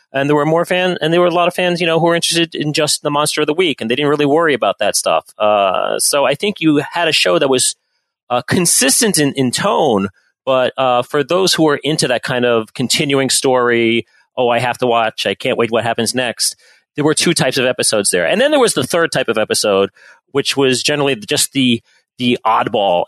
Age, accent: 30-49, American